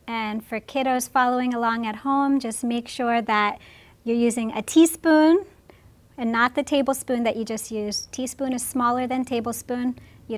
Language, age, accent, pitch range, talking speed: English, 30-49, American, 225-270 Hz, 170 wpm